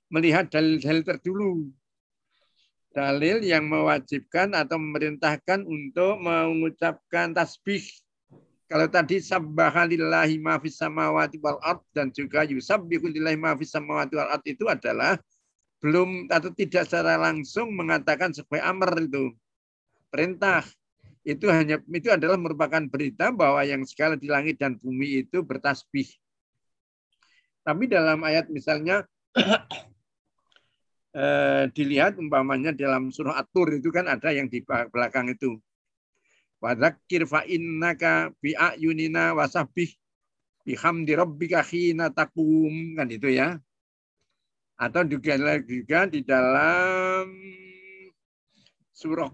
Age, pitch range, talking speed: 50-69, 140-175 Hz, 105 wpm